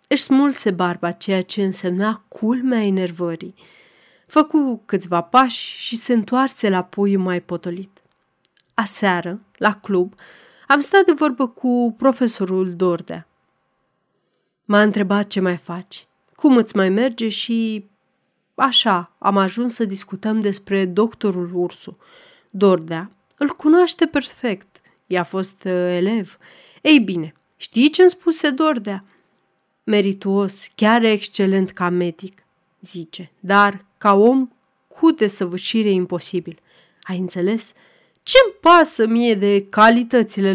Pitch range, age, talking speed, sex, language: 185-230 Hz, 30-49, 115 wpm, female, Romanian